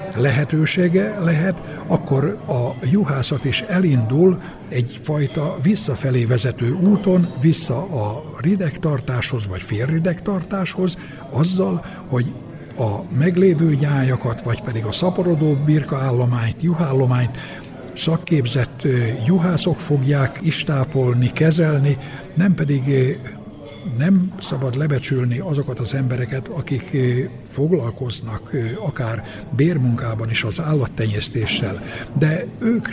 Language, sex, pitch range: Hungarian, male, 125-165 Hz